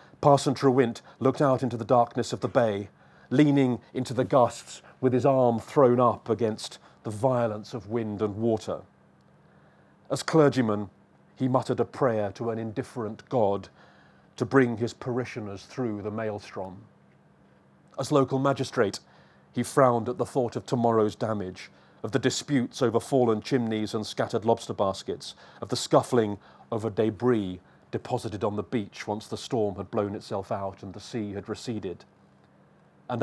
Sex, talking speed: male, 155 wpm